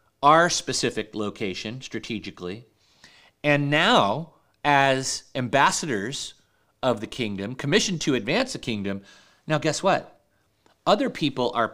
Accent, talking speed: American, 110 wpm